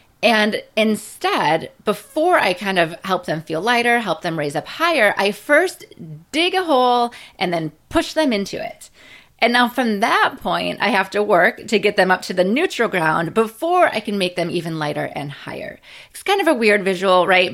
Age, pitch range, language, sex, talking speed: 30-49, 185-265 Hz, English, female, 200 wpm